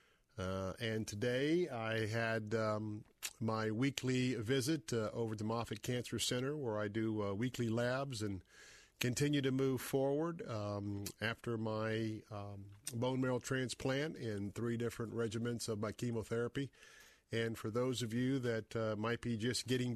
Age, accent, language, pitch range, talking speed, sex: 50-69, American, English, 110-130 Hz, 155 wpm, male